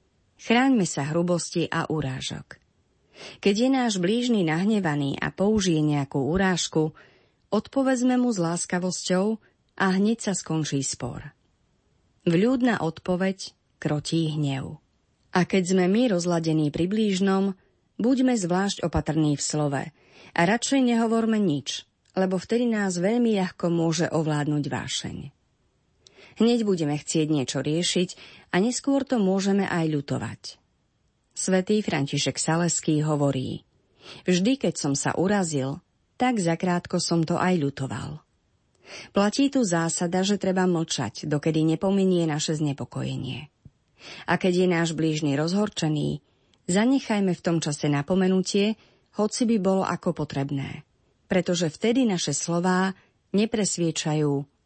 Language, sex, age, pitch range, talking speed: Slovak, female, 30-49, 150-195 Hz, 115 wpm